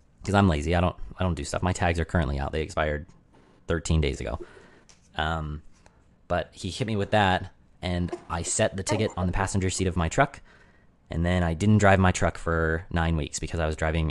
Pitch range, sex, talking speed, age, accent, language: 80-95 Hz, male, 220 wpm, 30-49, American, English